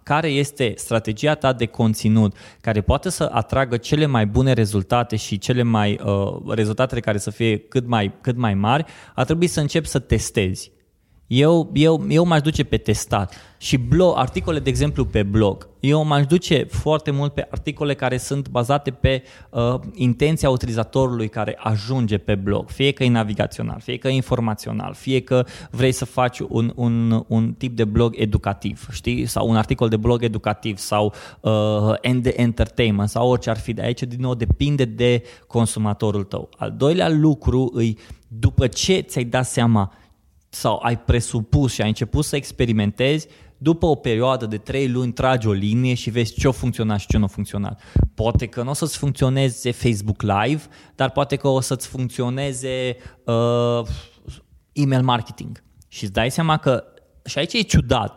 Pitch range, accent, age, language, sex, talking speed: 110-135 Hz, native, 20-39, Romanian, male, 170 wpm